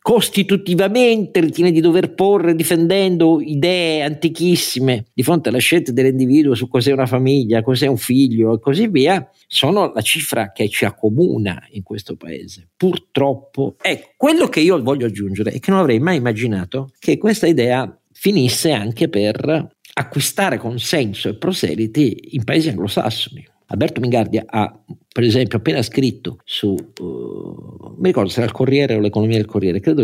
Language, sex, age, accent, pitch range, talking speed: Italian, male, 50-69, native, 110-145 Hz, 155 wpm